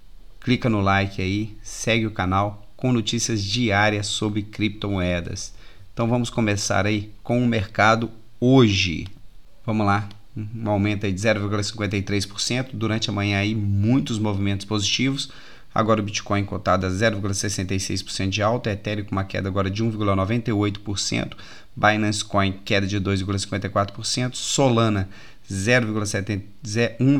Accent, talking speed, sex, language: Brazilian, 115 wpm, male, Portuguese